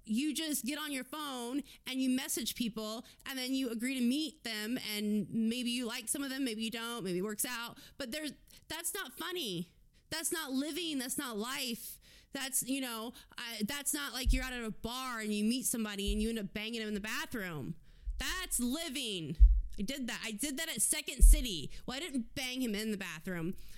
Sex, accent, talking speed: female, American, 215 wpm